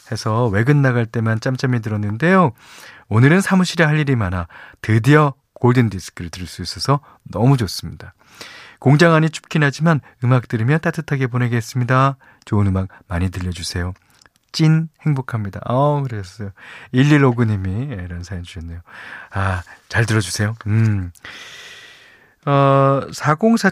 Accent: native